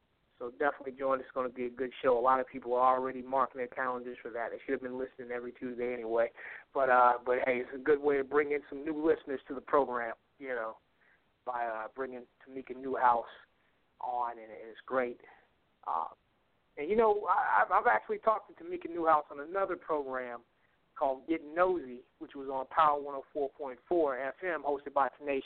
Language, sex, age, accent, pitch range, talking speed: English, male, 30-49, American, 130-155 Hz, 195 wpm